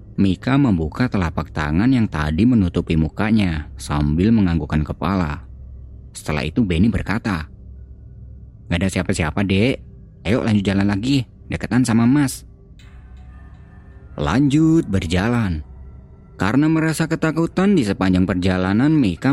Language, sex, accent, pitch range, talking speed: Indonesian, male, native, 80-115 Hz, 110 wpm